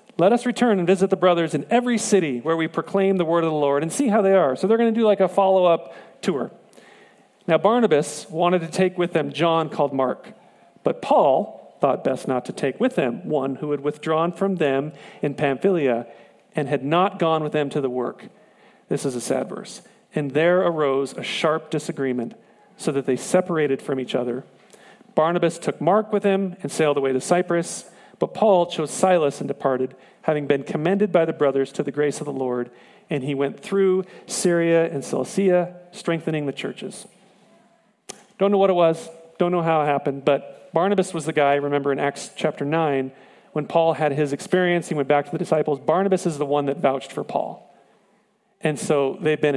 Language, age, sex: English, 40-59, male